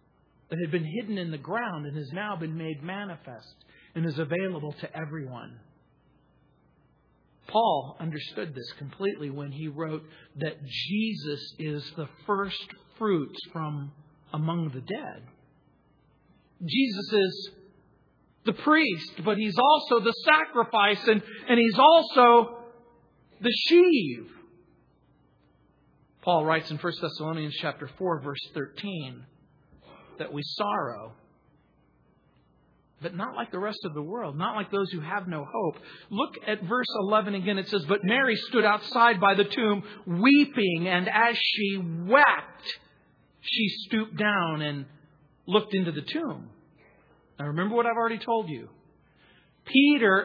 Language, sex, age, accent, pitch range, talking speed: English, male, 40-59, American, 150-220 Hz, 135 wpm